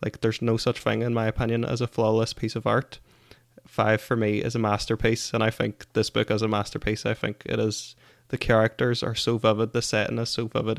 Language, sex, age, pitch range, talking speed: English, male, 20-39, 105-120 Hz, 235 wpm